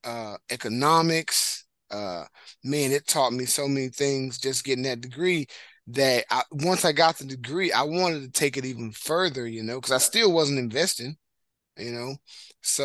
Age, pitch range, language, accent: 20-39, 125-145 Hz, English, American